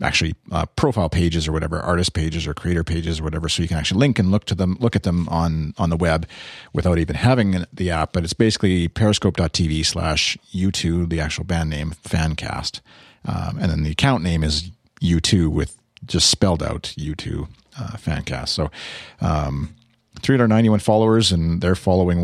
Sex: male